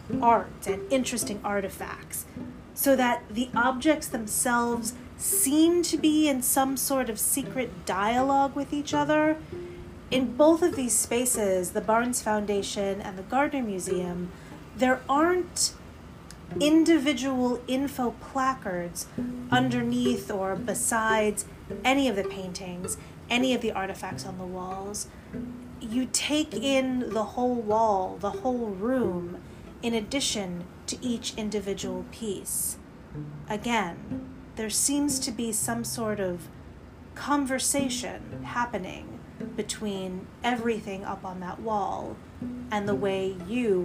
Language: English